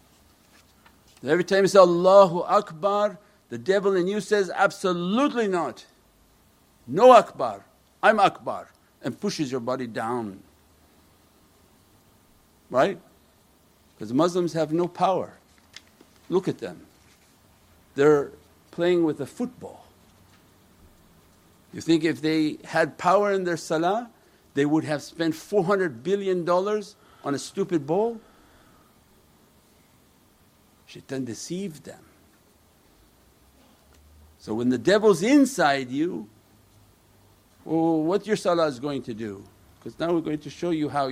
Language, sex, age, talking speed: English, male, 60-79, 120 wpm